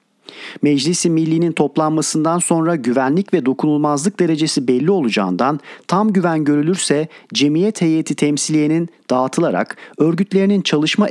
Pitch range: 145-180 Hz